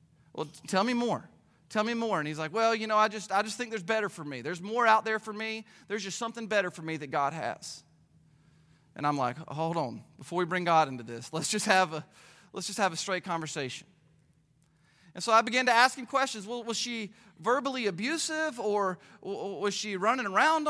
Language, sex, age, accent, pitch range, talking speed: English, male, 30-49, American, 155-225 Hz, 220 wpm